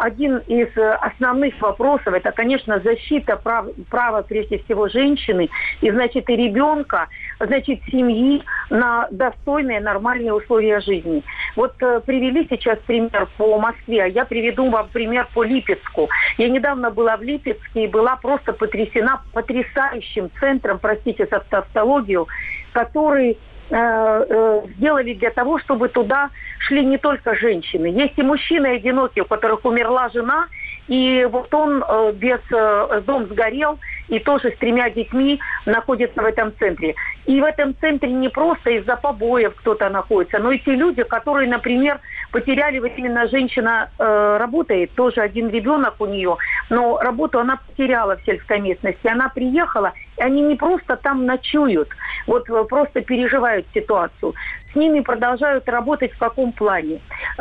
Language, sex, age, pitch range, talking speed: Russian, female, 50-69, 225-275 Hz, 140 wpm